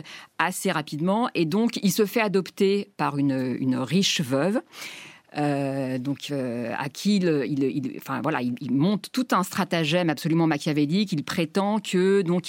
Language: French